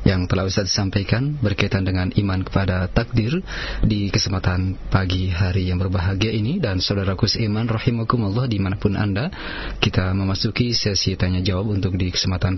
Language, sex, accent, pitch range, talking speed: Indonesian, male, native, 100-115 Hz, 140 wpm